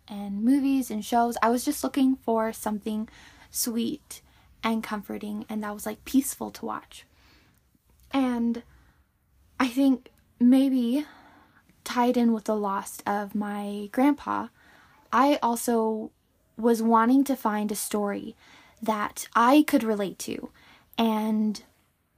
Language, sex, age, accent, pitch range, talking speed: English, female, 10-29, American, 215-255 Hz, 125 wpm